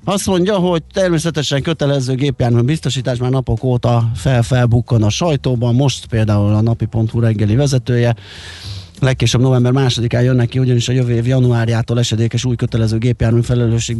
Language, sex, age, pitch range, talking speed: Hungarian, male, 30-49, 110-125 Hz, 145 wpm